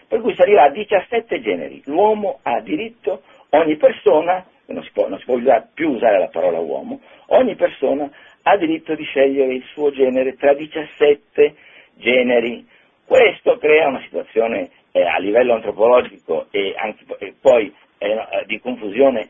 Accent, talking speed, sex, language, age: native, 155 wpm, male, Italian, 50-69